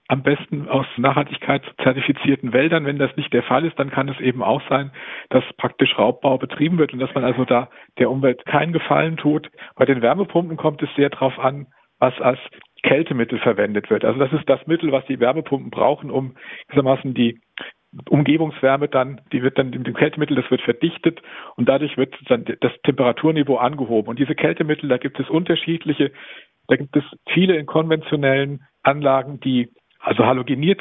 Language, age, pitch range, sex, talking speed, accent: German, 50-69, 130-150 Hz, male, 180 wpm, German